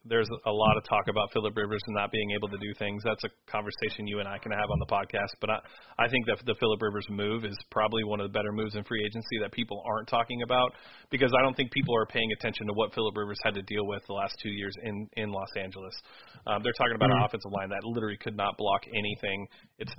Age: 30-49